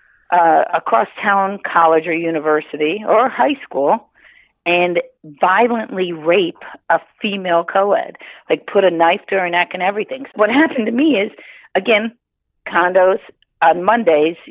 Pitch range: 165-230 Hz